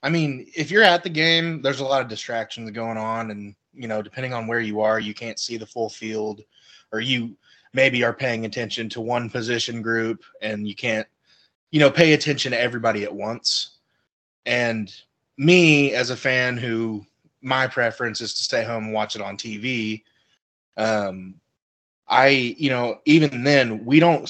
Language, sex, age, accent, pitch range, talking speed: English, male, 20-39, American, 110-135 Hz, 185 wpm